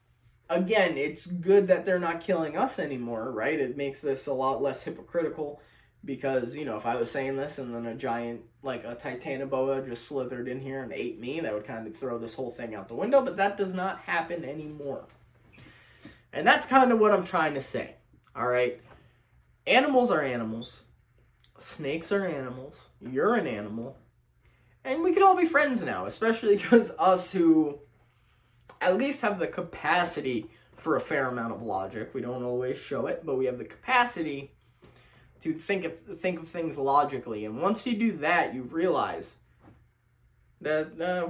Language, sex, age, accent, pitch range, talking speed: English, male, 20-39, American, 120-190 Hz, 180 wpm